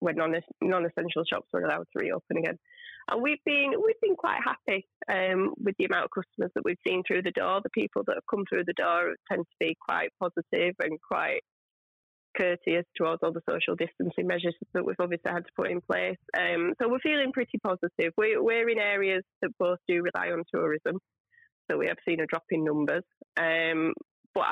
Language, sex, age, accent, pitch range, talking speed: English, female, 20-39, British, 170-250 Hz, 210 wpm